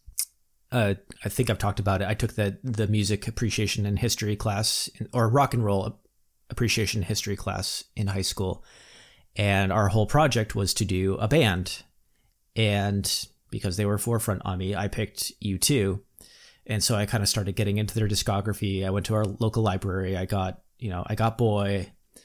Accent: American